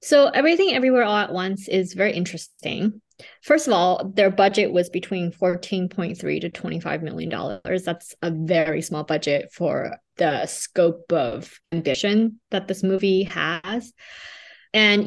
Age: 20-39